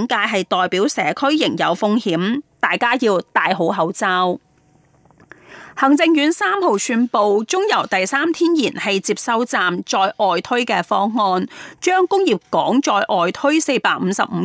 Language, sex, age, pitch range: Chinese, female, 30-49, 190-290 Hz